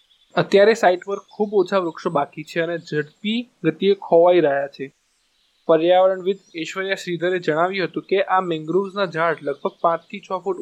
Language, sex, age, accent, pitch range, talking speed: Gujarati, male, 20-39, native, 165-190 Hz, 80 wpm